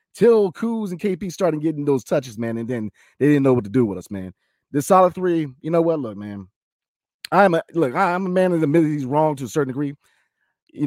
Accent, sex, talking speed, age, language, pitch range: American, male, 245 wpm, 30-49, English, 125-175 Hz